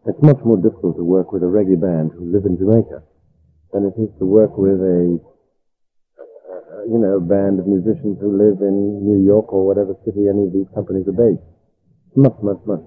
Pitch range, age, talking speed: 85-110 Hz, 50-69, 215 wpm